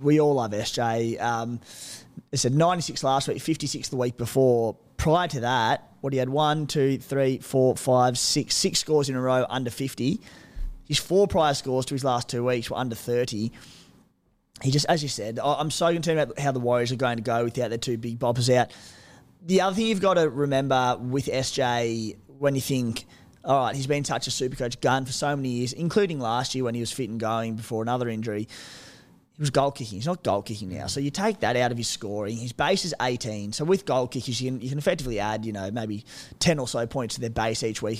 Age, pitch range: 20-39, 120-145 Hz